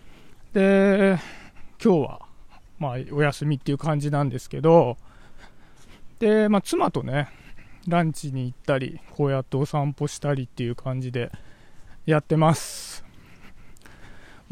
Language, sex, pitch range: Japanese, male, 140-195 Hz